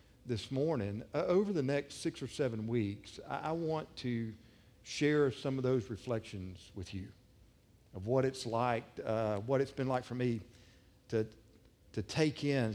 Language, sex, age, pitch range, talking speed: English, male, 50-69, 110-140 Hz, 170 wpm